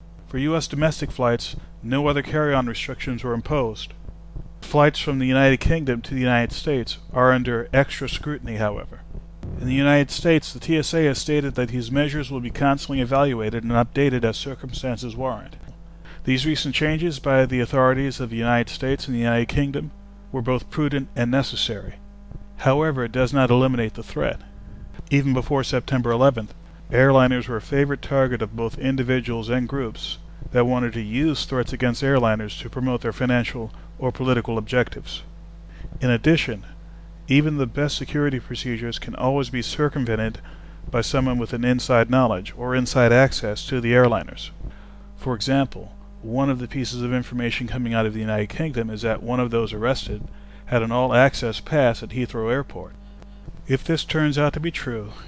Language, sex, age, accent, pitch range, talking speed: English, male, 40-59, American, 115-135 Hz, 170 wpm